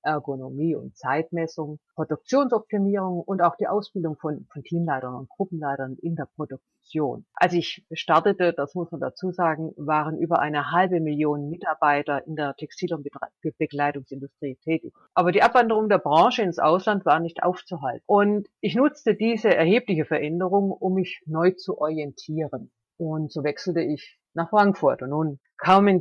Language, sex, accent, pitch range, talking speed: German, female, German, 145-185 Hz, 150 wpm